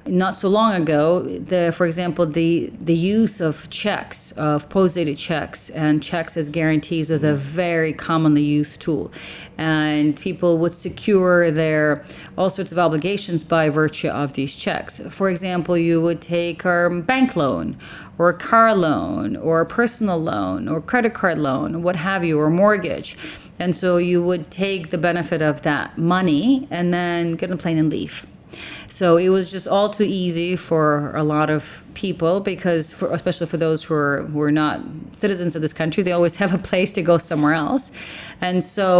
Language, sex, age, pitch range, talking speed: English, female, 40-59, 155-180 Hz, 185 wpm